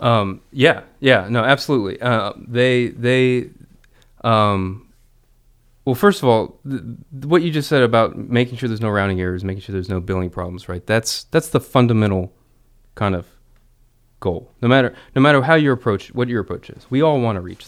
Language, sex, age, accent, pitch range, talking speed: English, male, 30-49, American, 100-130 Hz, 190 wpm